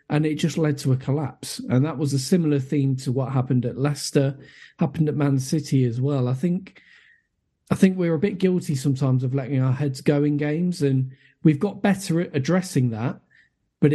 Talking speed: 205 wpm